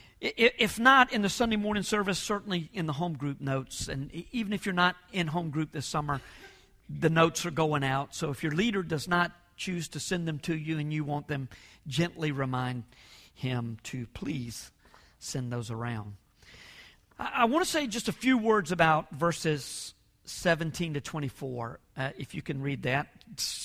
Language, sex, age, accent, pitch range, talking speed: English, male, 50-69, American, 135-220 Hz, 180 wpm